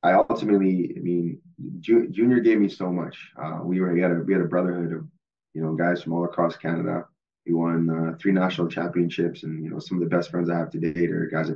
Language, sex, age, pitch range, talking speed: English, male, 20-39, 80-90 Hz, 250 wpm